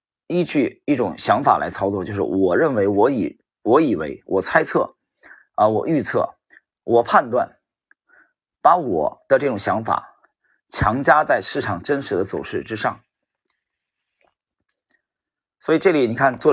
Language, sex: Chinese, male